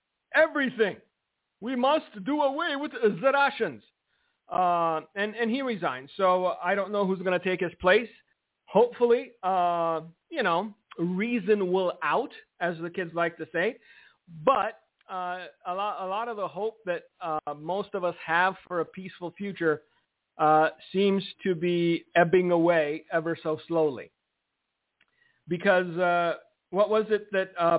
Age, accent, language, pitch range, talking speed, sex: 50-69, American, English, 175-235 Hz, 155 wpm, male